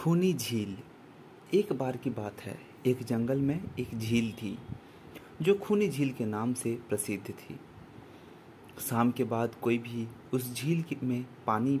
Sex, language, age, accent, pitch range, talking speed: male, Hindi, 30-49, native, 115-140 Hz, 155 wpm